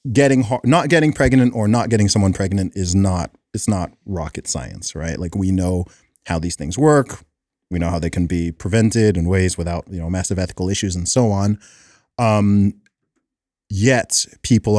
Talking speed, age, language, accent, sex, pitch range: 180 wpm, 30-49, English, American, male, 90-110 Hz